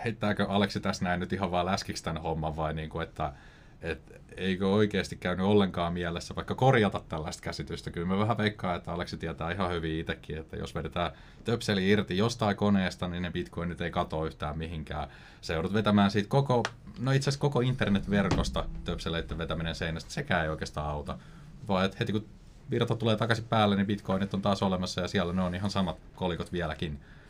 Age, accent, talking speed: 30-49, native, 185 wpm